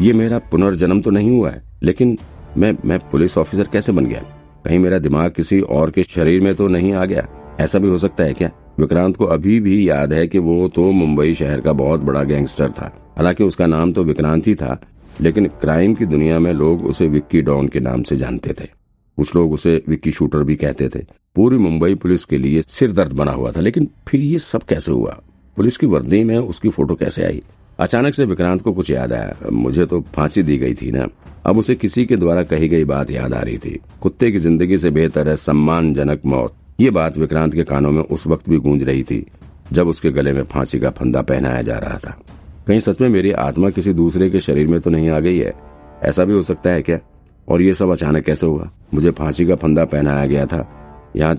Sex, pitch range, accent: male, 75-90 Hz, native